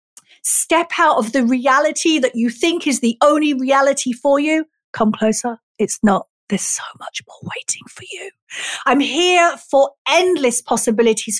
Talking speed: 160 wpm